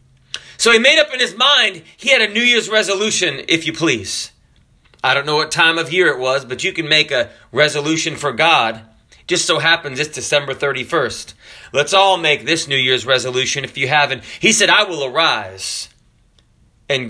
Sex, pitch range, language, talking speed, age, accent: male, 130-200 Hz, English, 195 wpm, 30-49, American